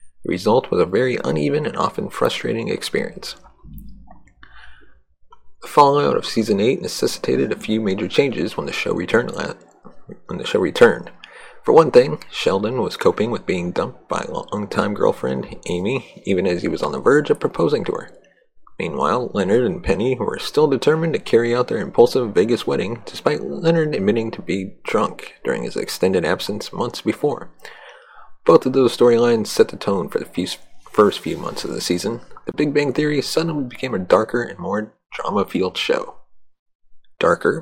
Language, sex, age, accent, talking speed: English, male, 30-49, American, 175 wpm